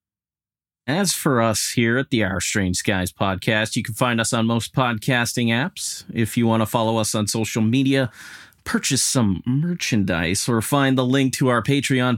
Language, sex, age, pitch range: English, male, 30-49, 100-120 Hz